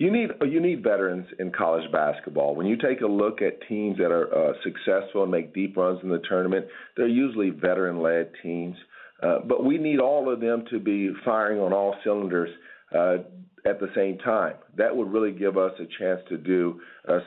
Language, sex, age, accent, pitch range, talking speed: English, male, 40-59, American, 85-100 Hz, 200 wpm